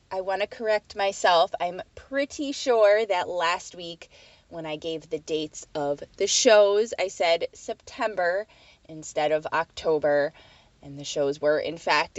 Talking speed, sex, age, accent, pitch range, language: 155 wpm, female, 20-39, American, 155-225 Hz, English